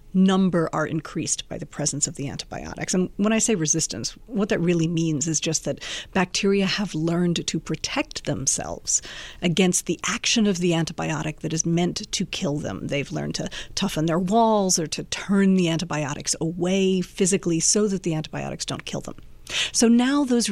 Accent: American